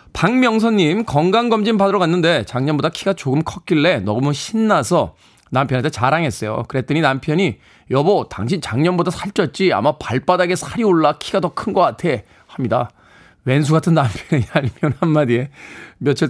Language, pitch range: Korean, 120-180 Hz